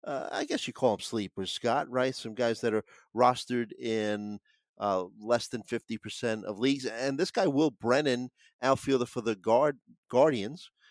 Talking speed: 165 wpm